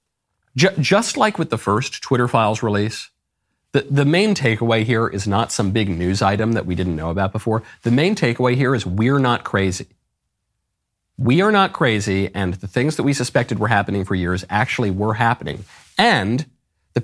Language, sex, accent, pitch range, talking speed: English, male, American, 95-130 Hz, 185 wpm